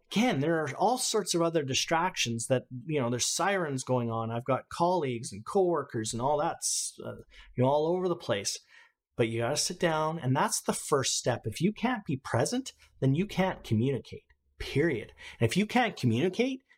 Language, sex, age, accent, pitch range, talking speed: English, male, 30-49, American, 125-180 Hz, 200 wpm